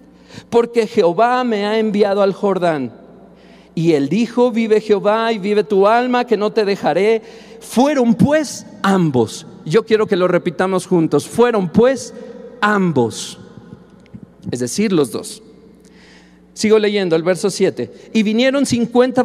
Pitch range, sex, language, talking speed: 190-245 Hz, male, Spanish, 135 wpm